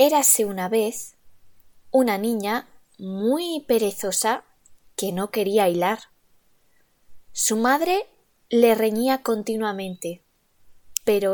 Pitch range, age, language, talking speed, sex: 190-235 Hz, 20-39, Italian, 90 wpm, female